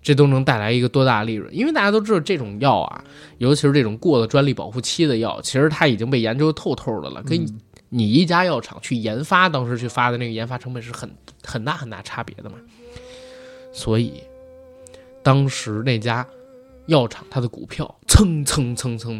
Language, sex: Chinese, male